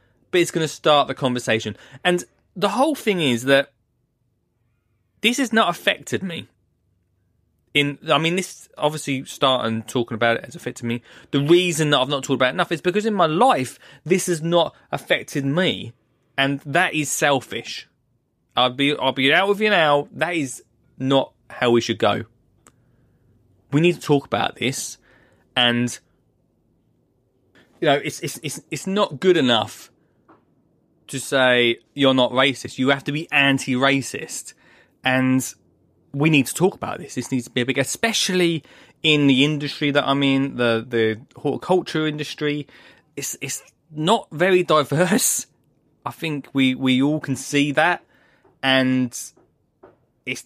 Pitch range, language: 125-155 Hz, English